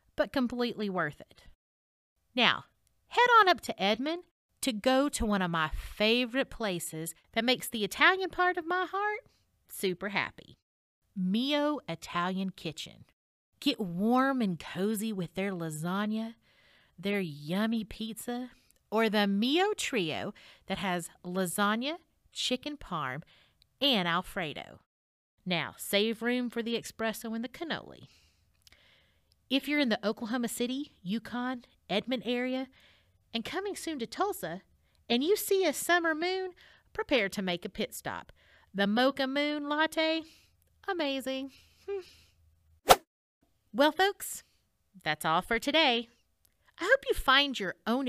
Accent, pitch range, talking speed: American, 190-305 Hz, 130 wpm